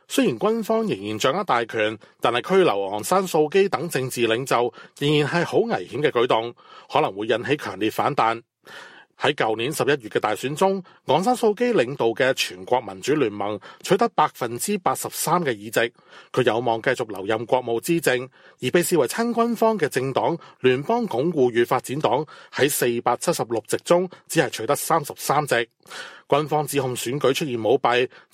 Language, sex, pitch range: Chinese, male, 120-185 Hz